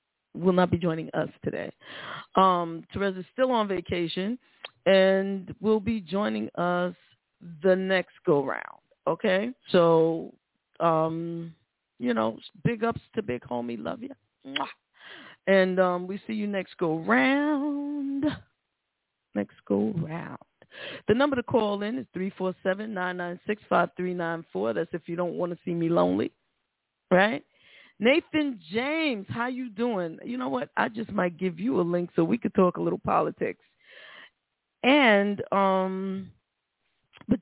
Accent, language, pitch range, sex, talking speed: American, English, 175-245 Hz, female, 135 wpm